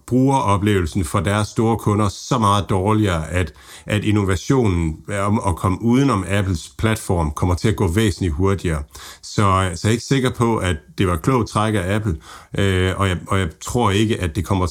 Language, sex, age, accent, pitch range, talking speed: Danish, male, 60-79, native, 90-115 Hz, 195 wpm